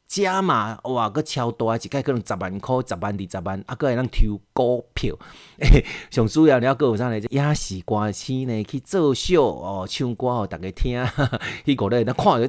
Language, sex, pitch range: Chinese, male, 100-135 Hz